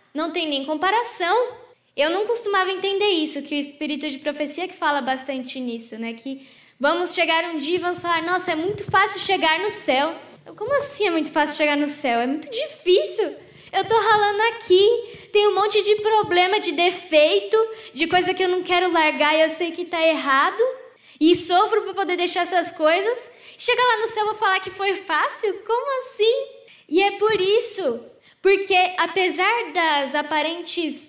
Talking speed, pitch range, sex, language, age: 185 wpm, 270-380 Hz, female, Portuguese, 10-29